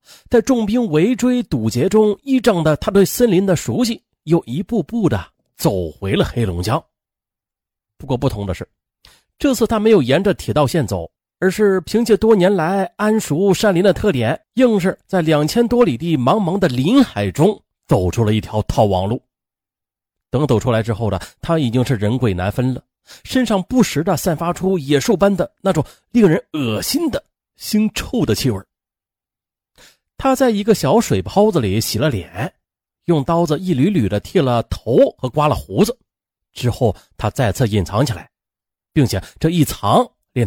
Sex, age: male, 30-49